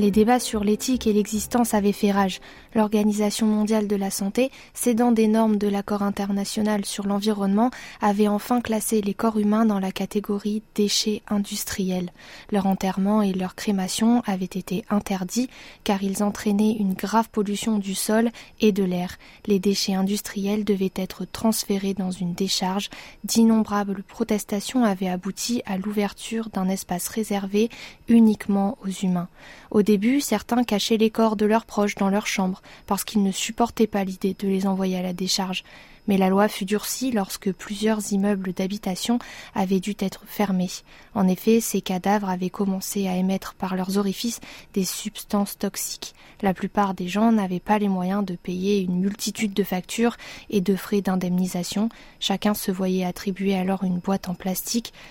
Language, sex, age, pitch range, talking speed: French, female, 20-39, 190-215 Hz, 165 wpm